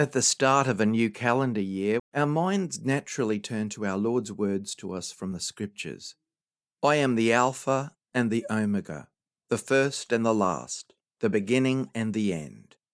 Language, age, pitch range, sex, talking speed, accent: English, 50-69, 100-130 Hz, male, 175 wpm, Australian